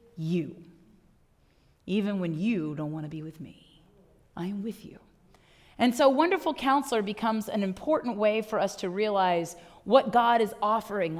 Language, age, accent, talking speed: English, 30-49, American, 155 wpm